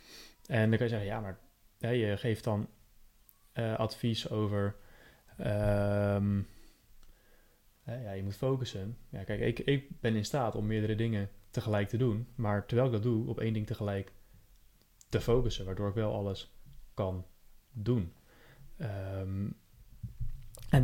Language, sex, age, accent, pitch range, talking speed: Dutch, male, 20-39, Dutch, 105-120 Hz, 140 wpm